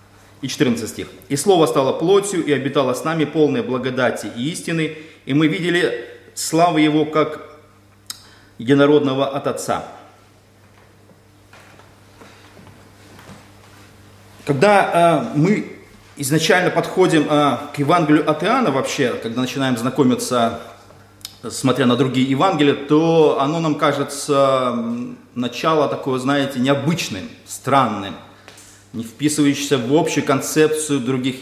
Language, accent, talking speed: Russian, native, 100 wpm